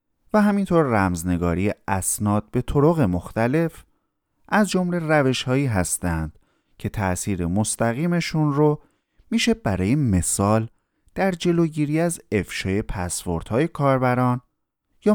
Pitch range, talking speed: 90-145 Hz, 105 wpm